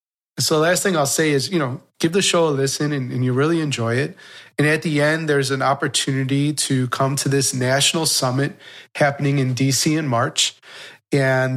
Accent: American